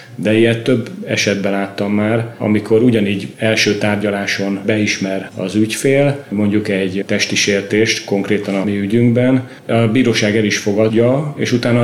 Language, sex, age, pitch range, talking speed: Hungarian, male, 40-59, 100-115 Hz, 135 wpm